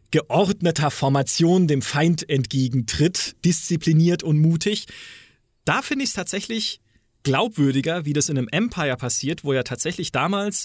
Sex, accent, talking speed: male, German, 135 wpm